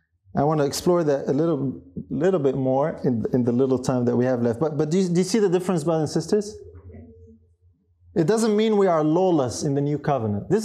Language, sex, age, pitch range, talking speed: English, male, 30-49, 135-200 Hz, 235 wpm